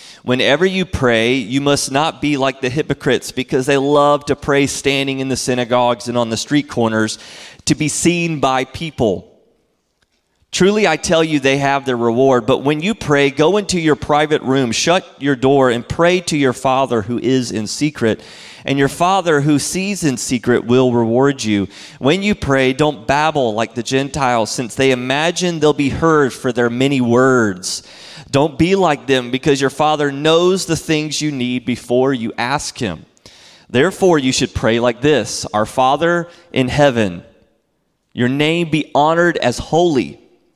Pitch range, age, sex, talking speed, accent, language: 120-150 Hz, 30-49, male, 175 wpm, American, English